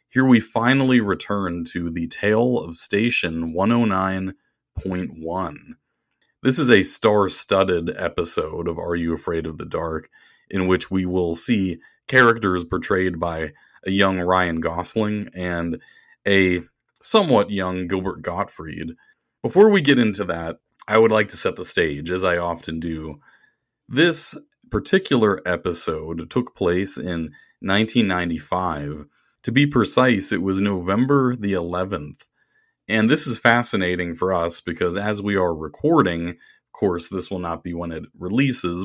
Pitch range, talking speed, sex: 85-110 Hz, 140 wpm, male